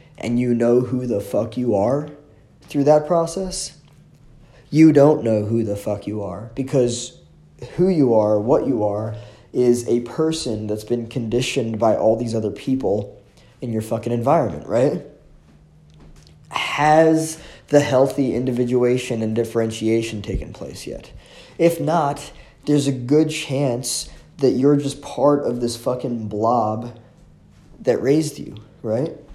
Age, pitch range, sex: 20-39, 110-140 Hz, male